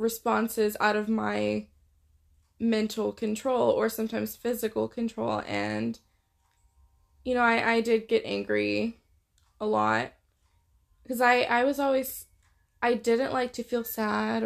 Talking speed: 130 wpm